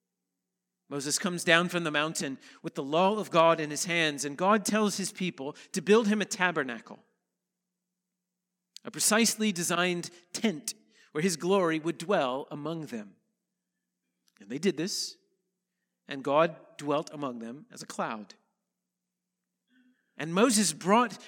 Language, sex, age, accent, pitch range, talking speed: English, male, 40-59, American, 165-205 Hz, 140 wpm